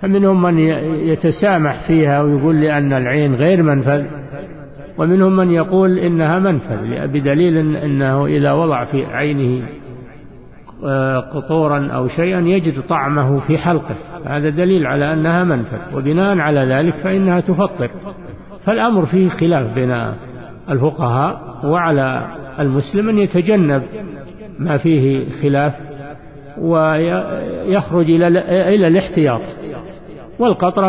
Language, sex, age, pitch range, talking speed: Arabic, male, 50-69, 140-170 Hz, 105 wpm